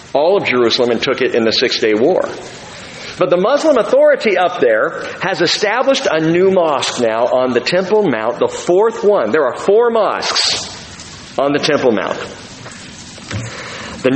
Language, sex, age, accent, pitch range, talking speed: English, male, 50-69, American, 155-235 Hz, 160 wpm